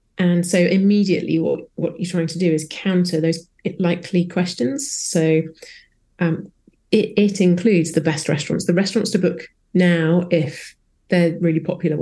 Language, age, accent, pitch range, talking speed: English, 30-49, British, 165-195 Hz, 155 wpm